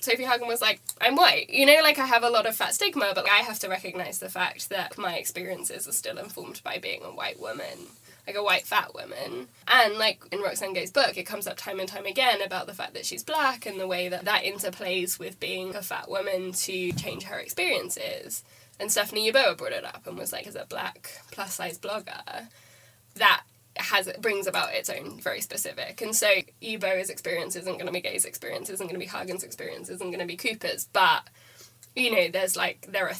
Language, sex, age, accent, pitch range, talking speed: English, female, 10-29, British, 185-270 Hz, 225 wpm